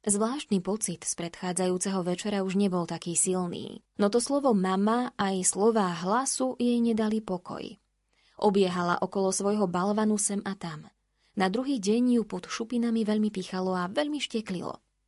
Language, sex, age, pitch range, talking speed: Slovak, female, 20-39, 185-230 Hz, 145 wpm